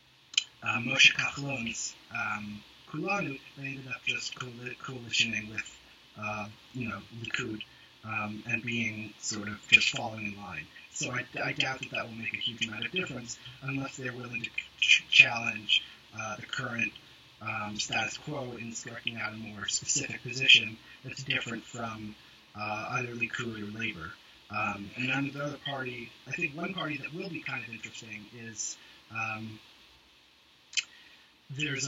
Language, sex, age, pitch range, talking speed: English, male, 30-49, 110-130 Hz, 150 wpm